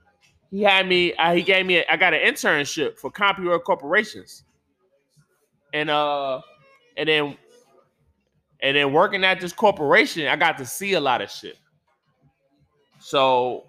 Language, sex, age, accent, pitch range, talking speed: English, male, 20-39, American, 135-185 Hz, 150 wpm